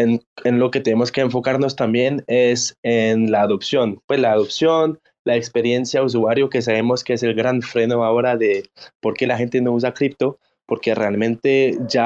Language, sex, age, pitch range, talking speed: English, male, 20-39, 120-145 Hz, 185 wpm